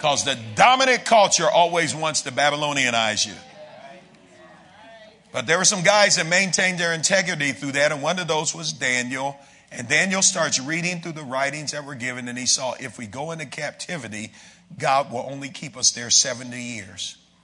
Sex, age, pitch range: male, 50-69, 120-170 Hz